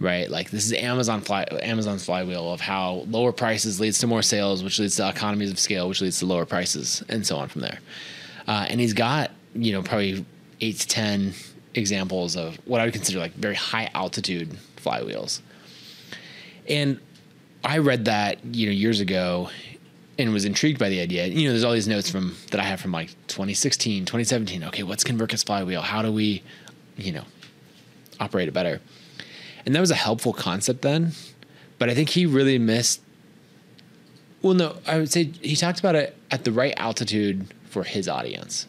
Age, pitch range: 20-39, 100-135 Hz